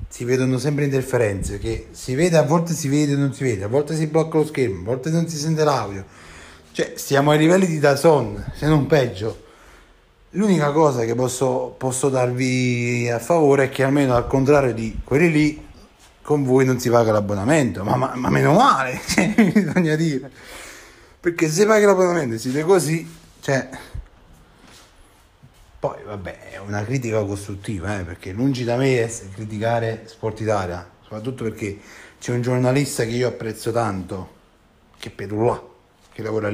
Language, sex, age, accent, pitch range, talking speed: Italian, male, 30-49, native, 105-140 Hz, 170 wpm